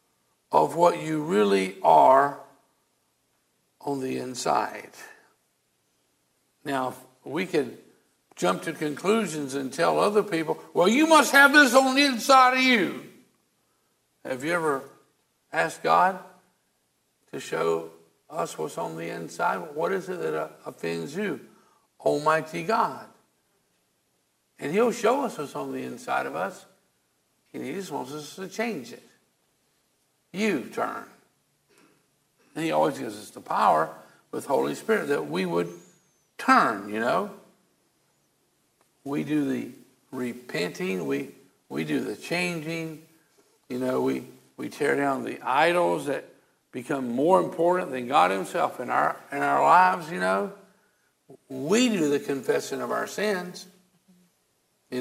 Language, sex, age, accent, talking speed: English, male, 60-79, American, 135 wpm